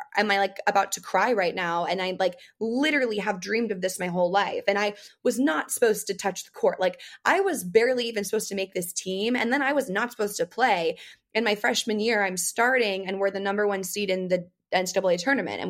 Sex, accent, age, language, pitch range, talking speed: female, American, 20-39, English, 180-215 Hz, 240 wpm